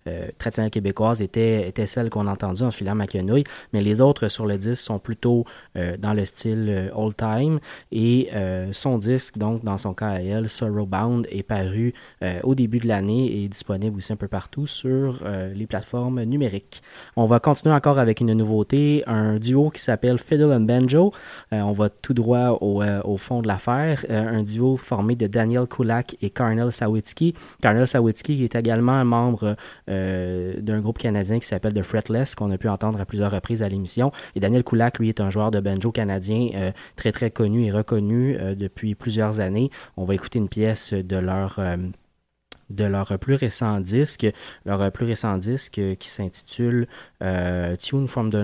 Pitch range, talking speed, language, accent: 100-120 Hz, 190 wpm, French, Canadian